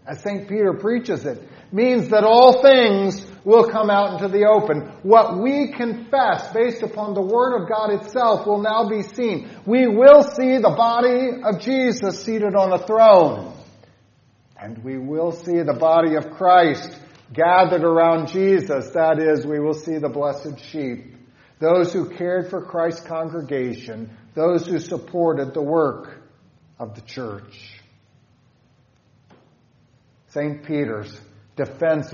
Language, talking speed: English, 140 wpm